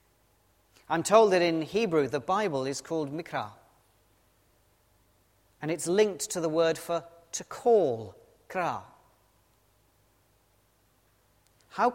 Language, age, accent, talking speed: English, 40-59, British, 105 wpm